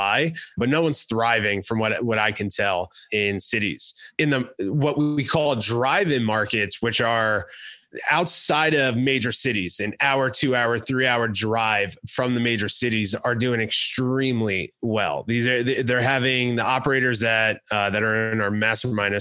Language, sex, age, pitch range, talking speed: English, male, 30-49, 110-130 Hz, 160 wpm